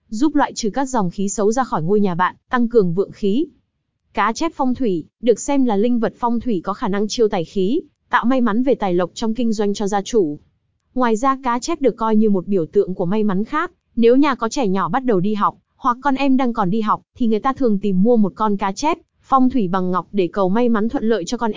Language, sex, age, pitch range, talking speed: Vietnamese, female, 20-39, 195-245 Hz, 270 wpm